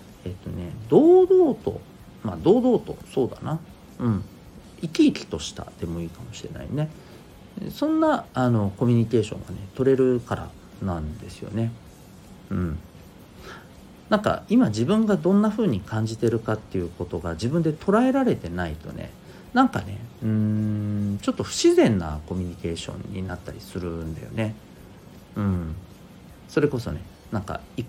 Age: 40-59